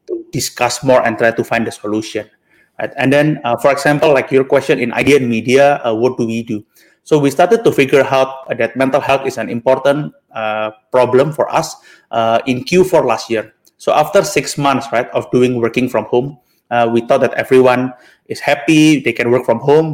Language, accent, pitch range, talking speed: English, Indonesian, 115-140 Hz, 205 wpm